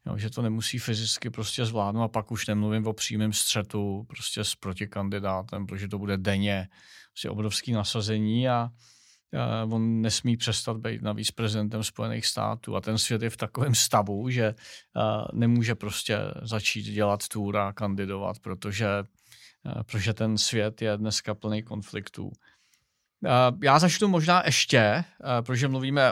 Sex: male